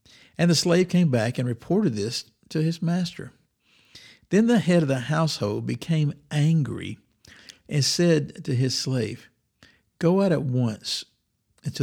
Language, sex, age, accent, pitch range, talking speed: English, male, 60-79, American, 110-150 Hz, 145 wpm